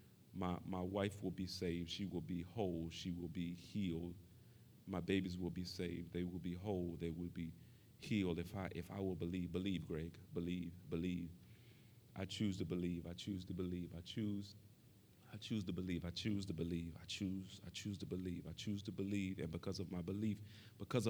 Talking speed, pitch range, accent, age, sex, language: 210 wpm, 90-110 Hz, American, 40-59, male, English